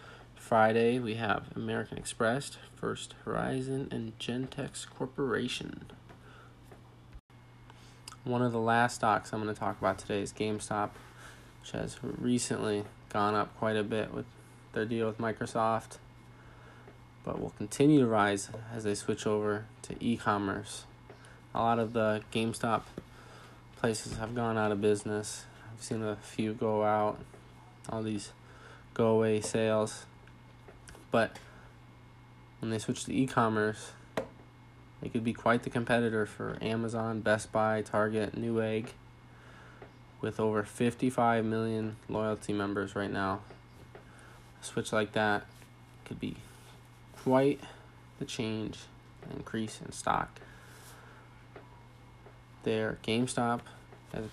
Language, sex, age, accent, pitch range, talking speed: English, male, 20-39, American, 105-120 Hz, 120 wpm